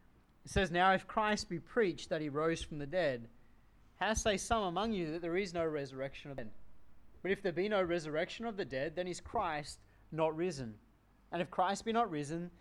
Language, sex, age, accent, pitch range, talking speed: English, male, 30-49, Australian, 120-185 Hz, 220 wpm